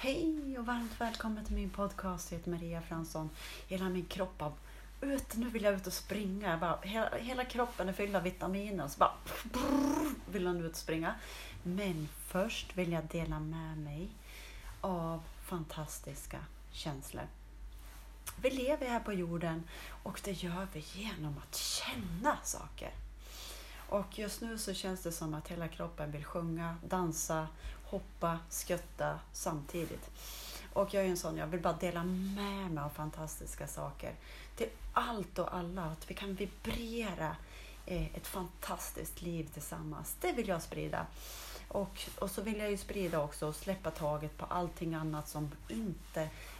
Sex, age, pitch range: female, 30-49, 155-200 Hz